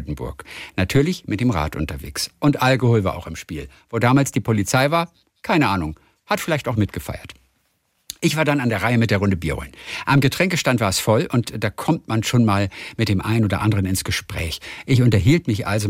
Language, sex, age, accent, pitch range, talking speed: German, male, 50-69, German, 105-145 Hz, 205 wpm